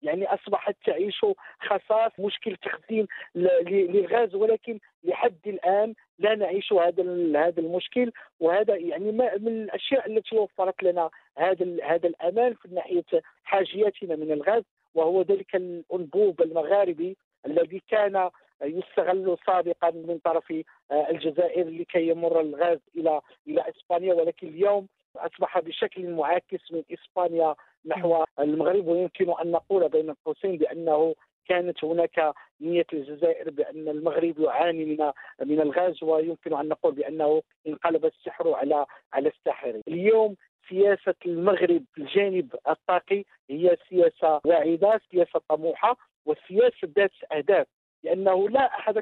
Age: 50-69